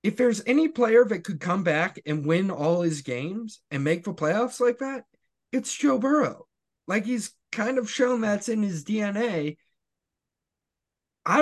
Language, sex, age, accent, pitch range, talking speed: English, male, 20-39, American, 120-165 Hz, 170 wpm